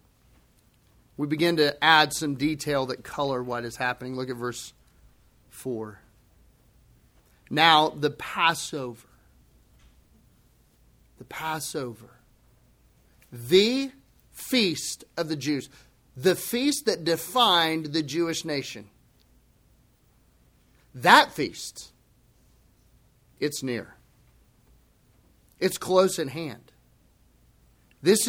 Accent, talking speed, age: American, 85 wpm, 40-59